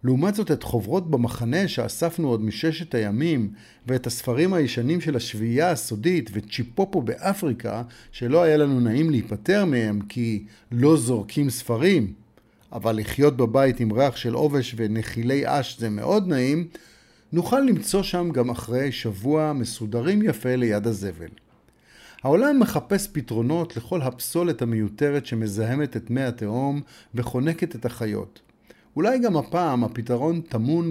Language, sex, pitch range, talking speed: Hebrew, male, 115-165 Hz, 130 wpm